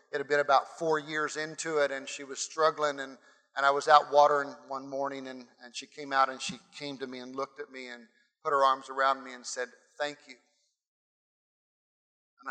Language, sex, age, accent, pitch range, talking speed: English, male, 40-59, American, 140-190 Hz, 215 wpm